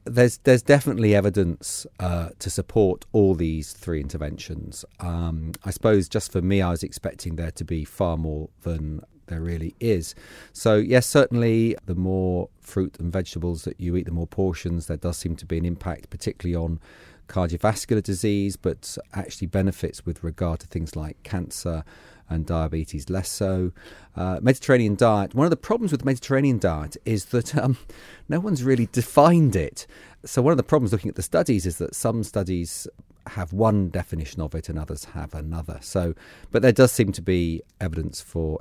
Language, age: English, 40-59